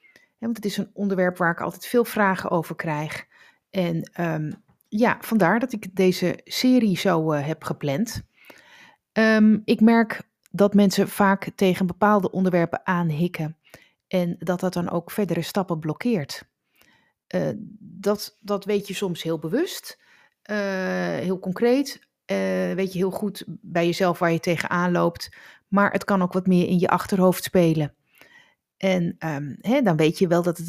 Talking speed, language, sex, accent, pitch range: 155 wpm, Dutch, female, Dutch, 170-215 Hz